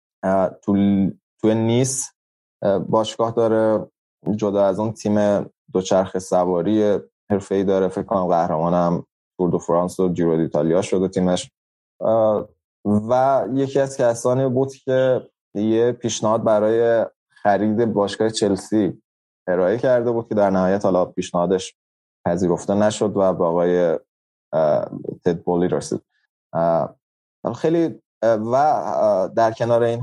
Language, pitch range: Persian, 95-120 Hz